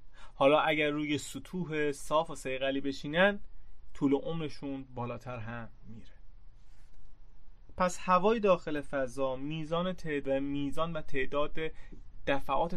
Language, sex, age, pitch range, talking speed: Persian, male, 30-49, 125-155 Hz, 110 wpm